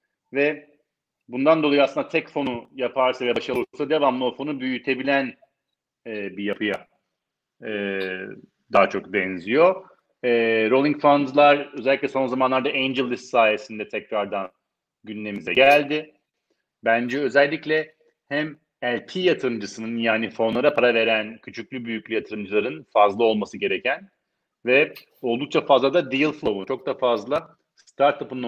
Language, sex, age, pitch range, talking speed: Turkish, male, 40-59, 110-145 Hz, 120 wpm